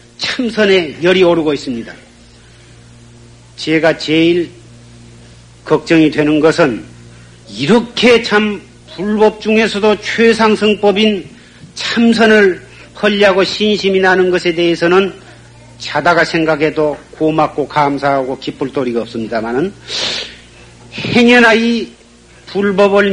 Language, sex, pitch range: Korean, male, 145-205 Hz